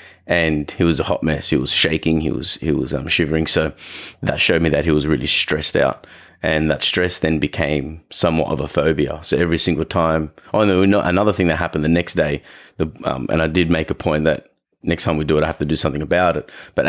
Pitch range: 80-90 Hz